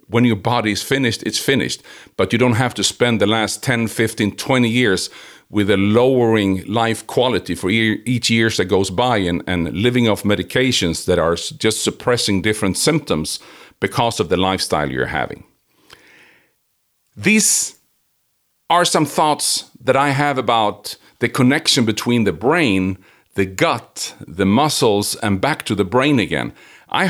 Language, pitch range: English, 100-130 Hz